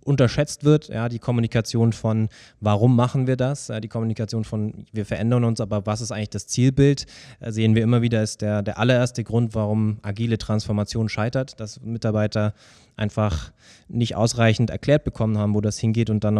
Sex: male